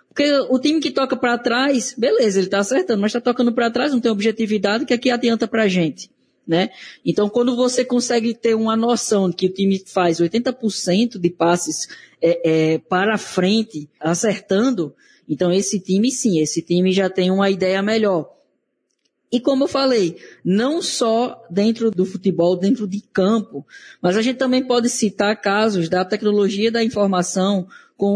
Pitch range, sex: 185-245 Hz, female